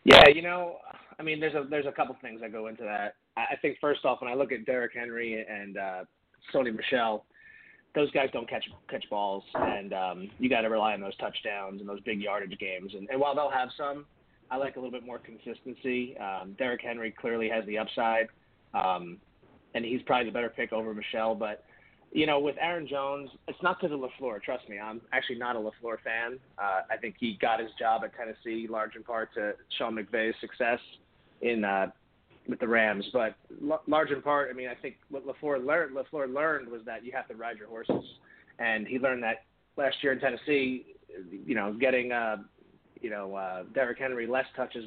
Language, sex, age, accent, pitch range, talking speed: English, male, 30-49, American, 110-140 Hz, 210 wpm